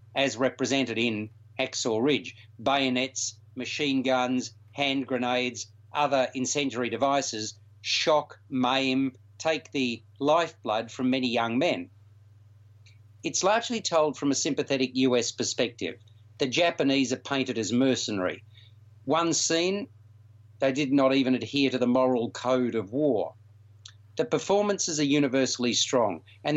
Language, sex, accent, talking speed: English, male, Australian, 125 wpm